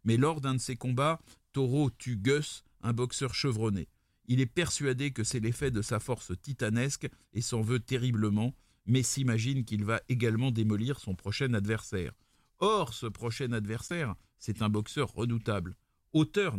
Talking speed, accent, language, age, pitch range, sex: 160 wpm, French, French, 50-69, 105-130 Hz, male